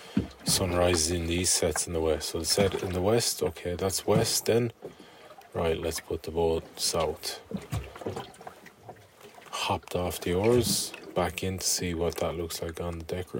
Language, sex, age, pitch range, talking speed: English, male, 30-49, 80-95 Hz, 180 wpm